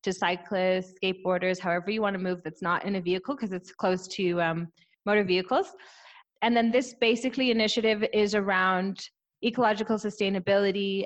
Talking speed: 155 wpm